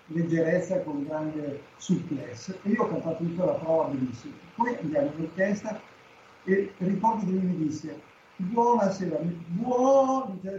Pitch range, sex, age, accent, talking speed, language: 145-195 Hz, male, 60-79, native, 140 wpm, Italian